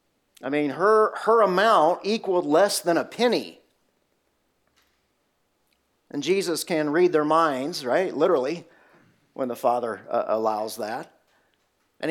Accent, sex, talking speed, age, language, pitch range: American, male, 125 wpm, 40-59, English, 160-260 Hz